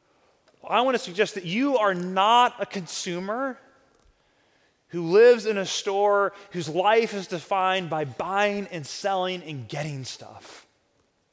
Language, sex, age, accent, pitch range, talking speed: English, male, 30-49, American, 180-220 Hz, 140 wpm